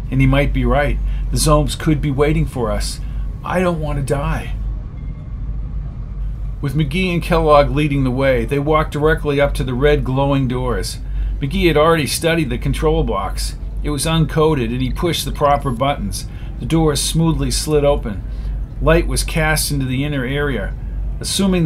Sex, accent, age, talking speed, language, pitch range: male, American, 50-69, 170 wpm, English, 125-150 Hz